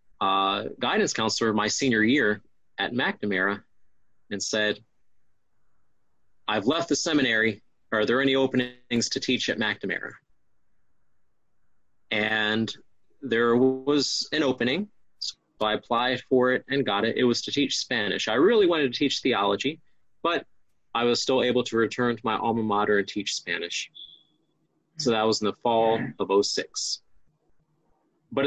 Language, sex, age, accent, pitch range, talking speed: English, male, 30-49, American, 110-135 Hz, 150 wpm